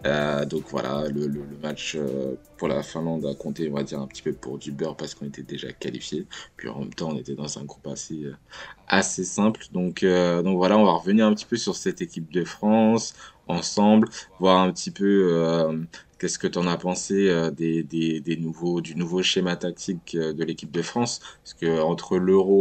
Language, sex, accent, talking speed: French, male, French, 220 wpm